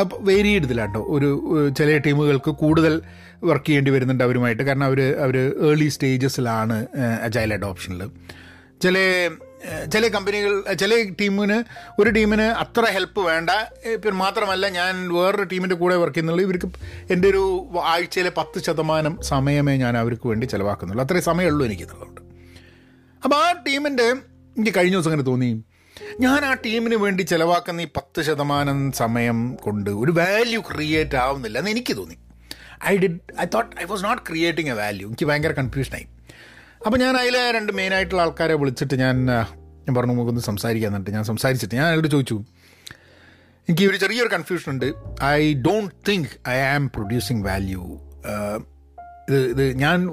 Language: Malayalam